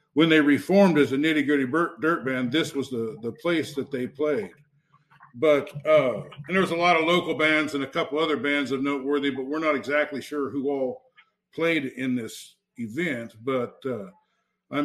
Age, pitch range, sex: 50-69, 140-165 Hz, male